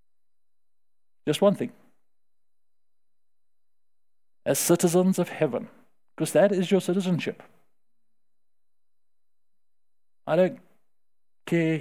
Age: 50-69